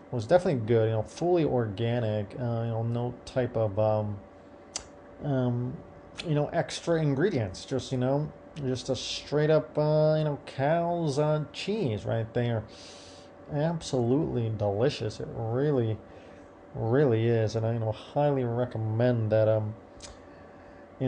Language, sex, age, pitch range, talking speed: English, male, 30-49, 110-130 Hz, 140 wpm